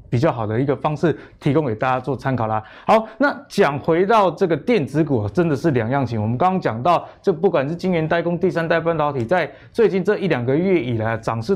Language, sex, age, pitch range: Chinese, male, 20-39, 130-180 Hz